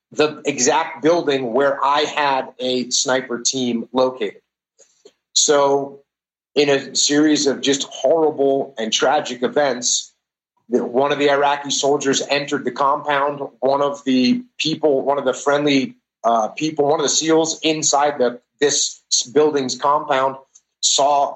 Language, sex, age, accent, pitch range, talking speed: English, male, 30-49, American, 135-150 Hz, 130 wpm